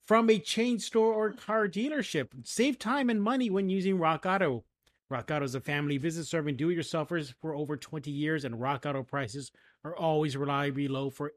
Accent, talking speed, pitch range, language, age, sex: American, 190 wpm, 145-195 Hz, English, 30-49, male